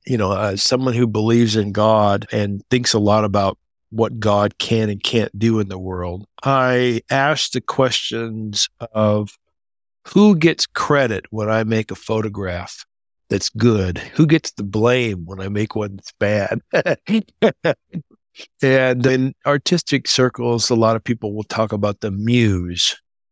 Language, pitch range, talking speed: English, 100-115 Hz, 155 wpm